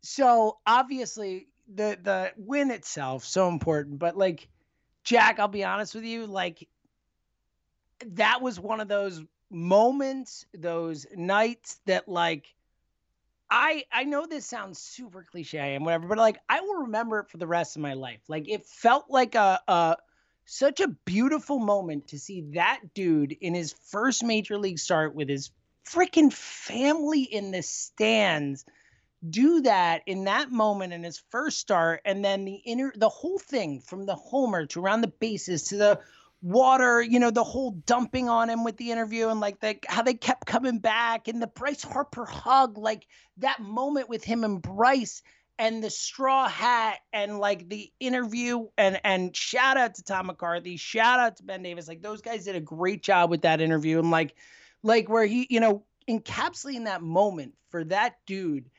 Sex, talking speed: male, 175 wpm